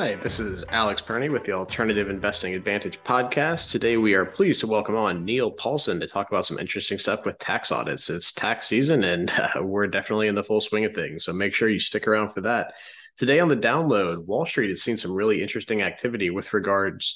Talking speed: 225 wpm